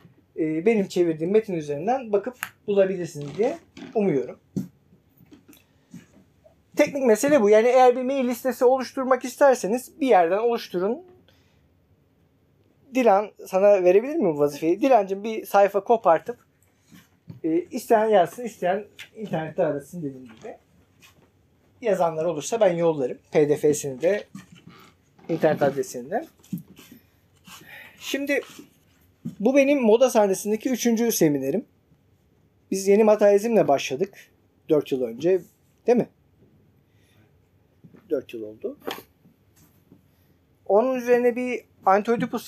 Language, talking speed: Turkish, 95 wpm